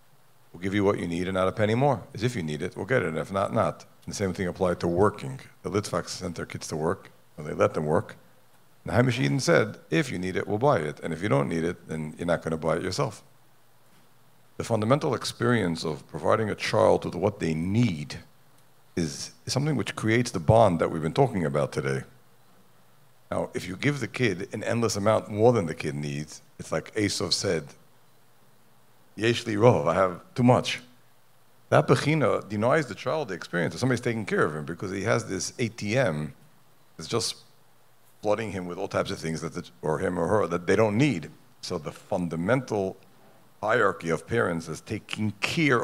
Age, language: 50-69, English